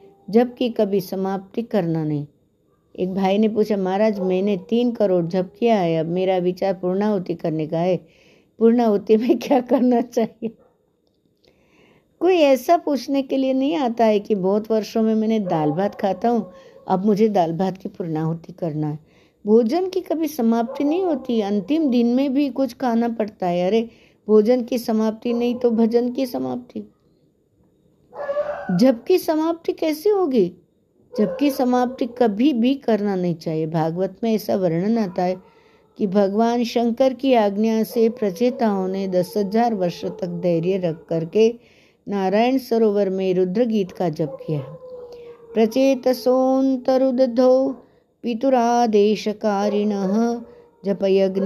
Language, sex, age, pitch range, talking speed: Hindi, female, 60-79, 190-250 Hz, 140 wpm